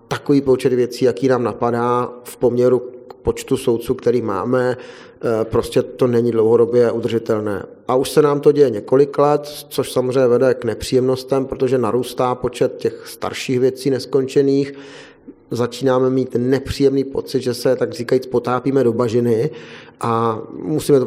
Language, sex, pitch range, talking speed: Czech, male, 120-140 Hz, 150 wpm